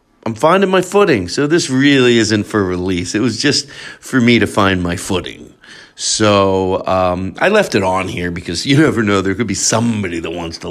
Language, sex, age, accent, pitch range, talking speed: English, male, 40-59, American, 105-150 Hz, 205 wpm